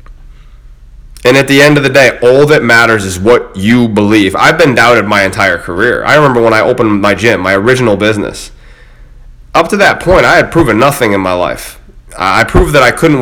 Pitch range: 110-140 Hz